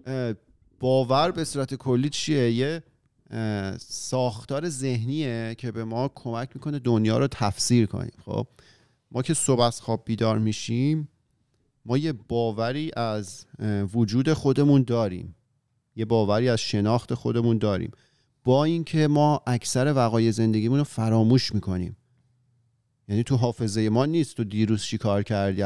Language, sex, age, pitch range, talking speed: Persian, male, 40-59, 110-135 Hz, 130 wpm